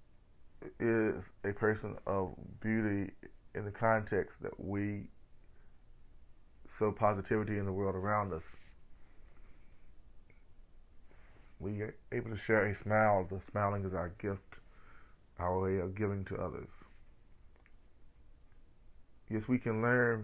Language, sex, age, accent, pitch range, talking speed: English, male, 20-39, American, 95-105 Hz, 115 wpm